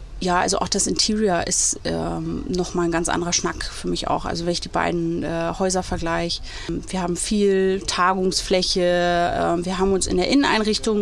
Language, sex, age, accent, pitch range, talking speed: German, female, 30-49, German, 180-215 Hz, 185 wpm